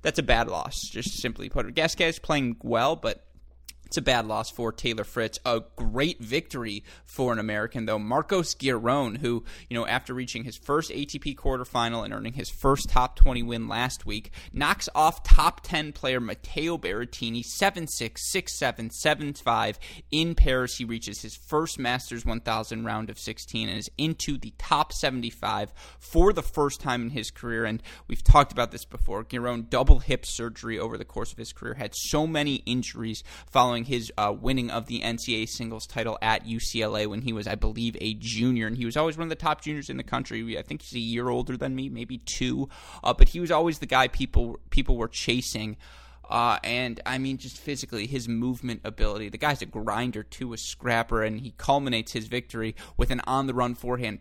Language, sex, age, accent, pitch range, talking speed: English, male, 20-39, American, 115-130 Hz, 195 wpm